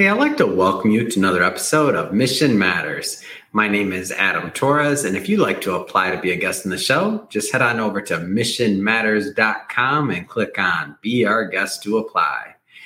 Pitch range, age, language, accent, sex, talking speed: 110-150 Hz, 30-49, English, American, male, 200 wpm